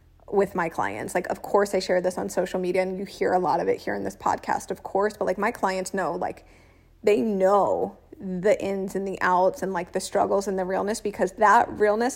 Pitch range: 185-210 Hz